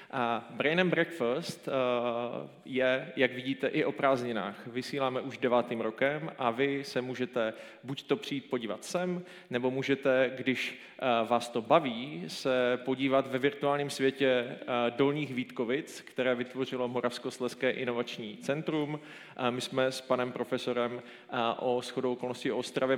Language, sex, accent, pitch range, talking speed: Czech, male, native, 120-135 Hz, 135 wpm